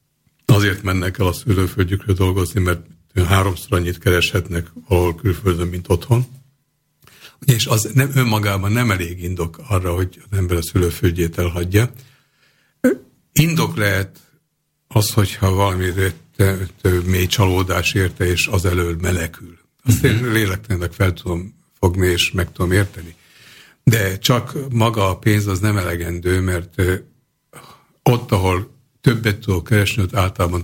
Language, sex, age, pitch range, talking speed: Slovak, male, 60-79, 90-115 Hz, 125 wpm